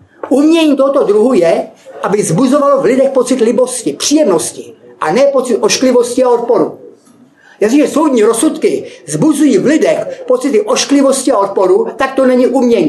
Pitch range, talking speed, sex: 250-300 Hz, 155 wpm, male